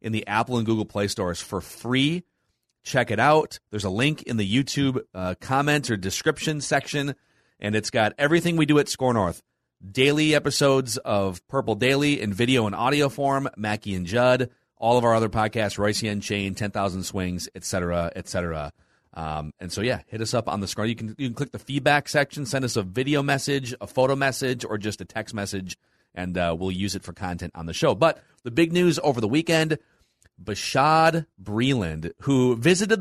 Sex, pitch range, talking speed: male, 100-140 Hz, 205 wpm